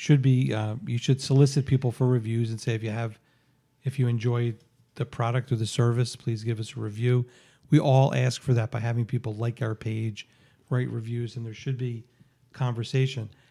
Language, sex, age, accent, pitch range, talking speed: English, male, 40-59, American, 115-135 Hz, 200 wpm